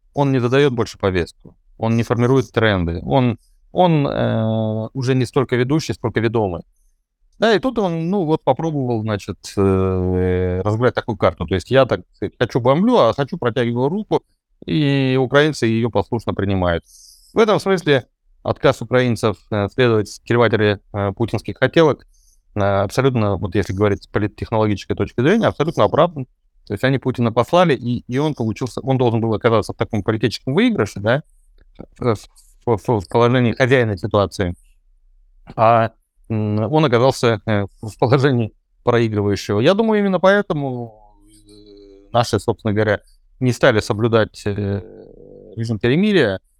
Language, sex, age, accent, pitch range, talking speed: Russian, male, 30-49, native, 100-130 Hz, 135 wpm